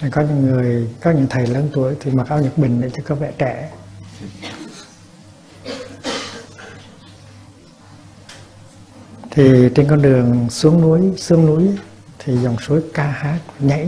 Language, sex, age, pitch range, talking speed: Vietnamese, male, 60-79, 110-160 Hz, 135 wpm